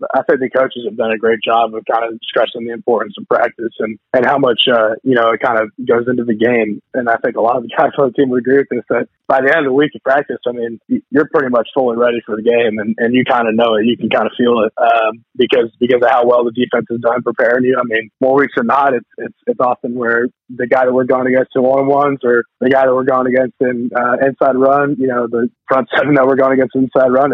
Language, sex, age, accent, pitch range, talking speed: English, male, 20-39, American, 115-130 Hz, 285 wpm